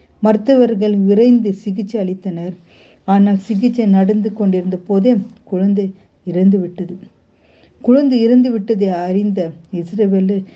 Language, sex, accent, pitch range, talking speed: Tamil, female, native, 190-235 Hz, 95 wpm